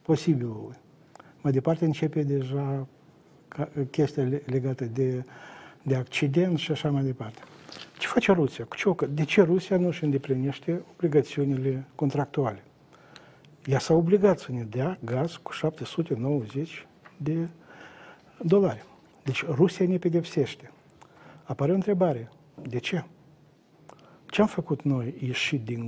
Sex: male